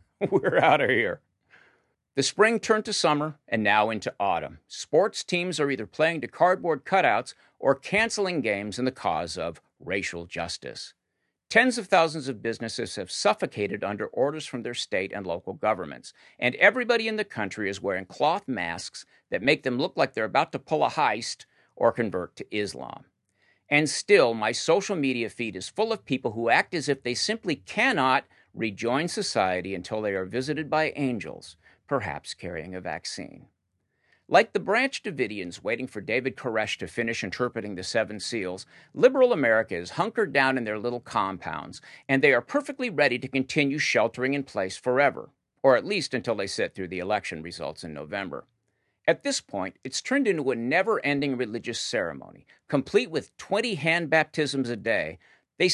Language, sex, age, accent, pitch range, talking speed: English, male, 50-69, American, 110-185 Hz, 175 wpm